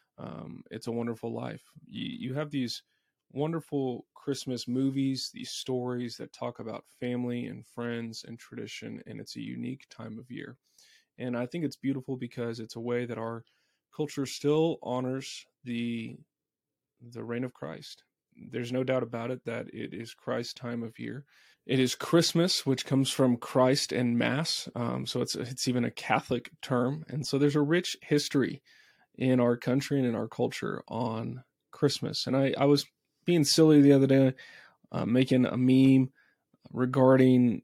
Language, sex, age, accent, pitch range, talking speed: English, male, 20-39, American, 120-140 Hz, 170 wpm